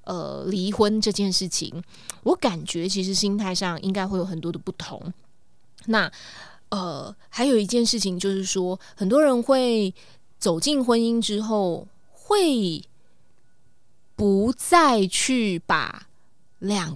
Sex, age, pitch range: female, 20-39, 180-225 Hz